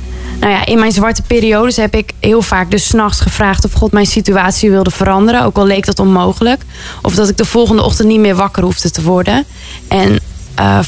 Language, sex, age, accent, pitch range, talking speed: Dutch, female, 20-39, Dutch, 180-215 Hz, 210 wpm